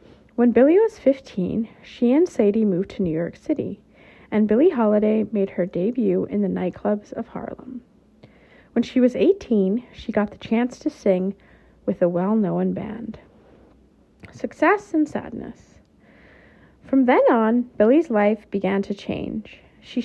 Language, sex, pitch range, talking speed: English, female, 210-255 Hz, 145 wpm